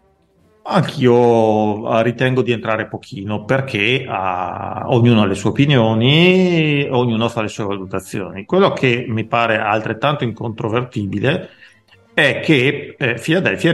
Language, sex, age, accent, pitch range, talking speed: Italian, male, 40-59, native, 105-135 Hz, 115 wpm